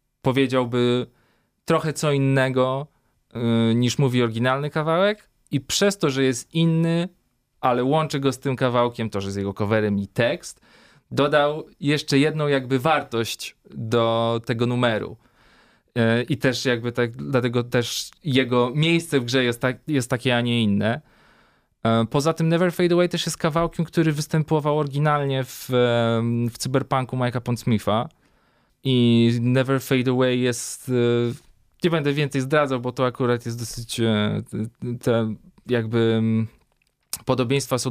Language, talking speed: Polish, 140 wpm